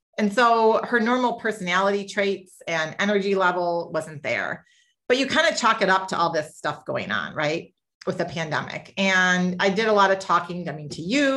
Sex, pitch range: female, 170-215 Hz